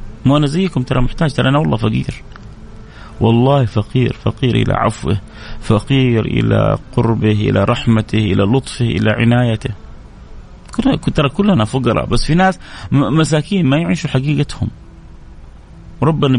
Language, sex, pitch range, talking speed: Arabic, male, 110-165 Hz, 120 wpm